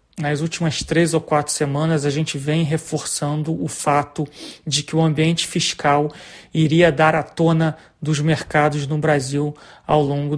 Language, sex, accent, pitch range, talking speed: Portuguese, male, Brazilian, 150-175 Hz, 155 wpm